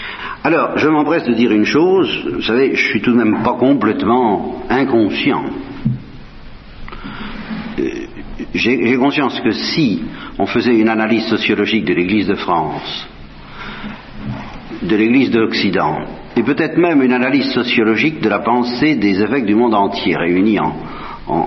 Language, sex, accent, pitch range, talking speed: French, male, French, 100-130 Hz, 150 wpm